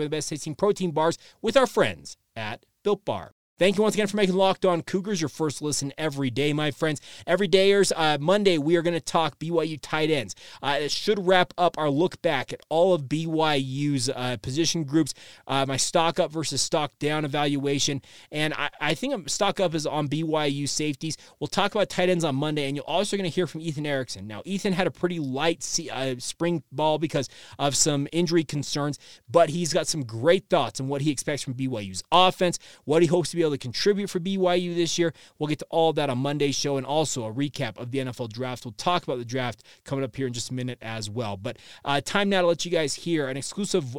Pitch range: 140-175 Hz